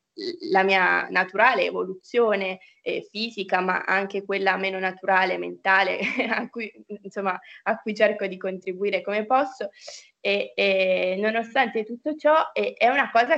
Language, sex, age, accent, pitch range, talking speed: Italian, female, 20-39, native, 190-250 Hz, 140 wpm